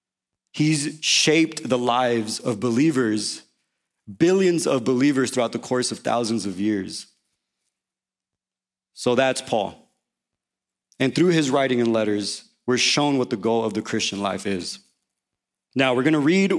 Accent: American